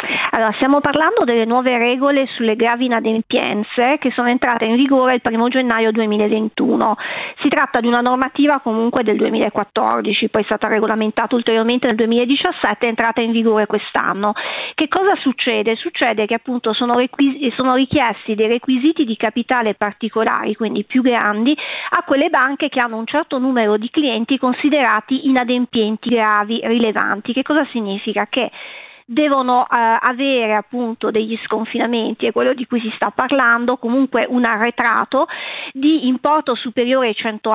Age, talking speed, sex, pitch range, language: 40-59, 155 wpm, female, 225-265 Hz, Italian